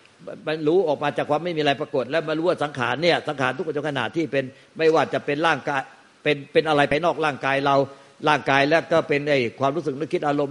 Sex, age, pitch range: male, 60-79, 125-150 Hz